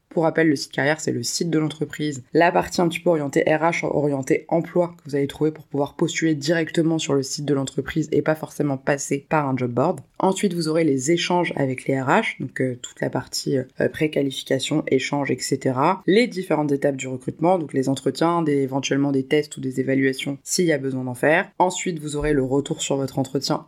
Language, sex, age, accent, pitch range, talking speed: French, female, 20-39, French, 135-160 Hz, 220 wpm